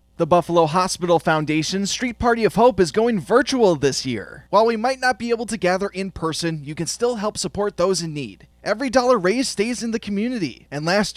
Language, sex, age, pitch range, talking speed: English, male, 20-39, 155-210 Hz, 215 wpm